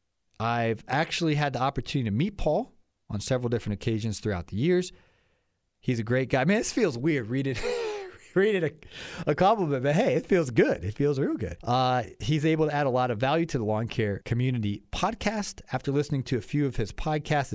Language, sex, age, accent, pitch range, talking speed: English, male, 30-49, American, 105-145 Hz, 205 wpm